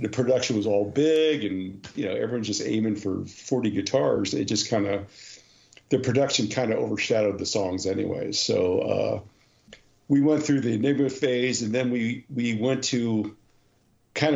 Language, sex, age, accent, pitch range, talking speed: English, male, 50-69, American, 105-130 Hz, 170 wpm